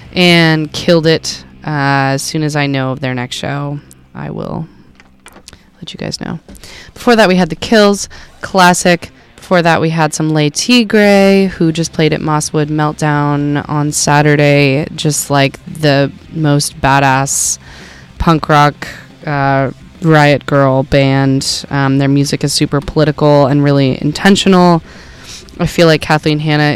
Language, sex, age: English, female, 20-39